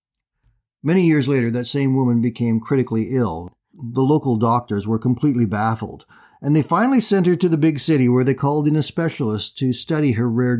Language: English